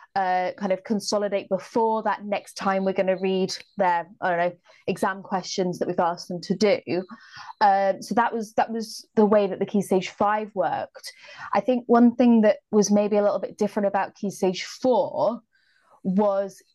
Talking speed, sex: 195 wpm, female